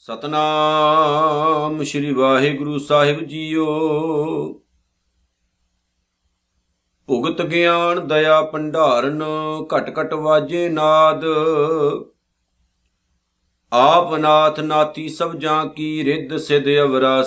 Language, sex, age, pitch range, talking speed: Punjabi, male, 50-69, 140-160 Hz, 80 wpm